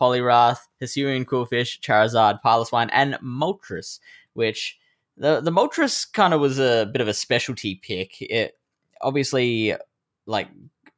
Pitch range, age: 95-130 Hz, 10-29